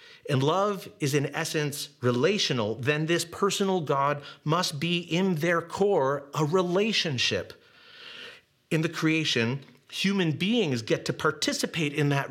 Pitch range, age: 125-175 Hz, 40-59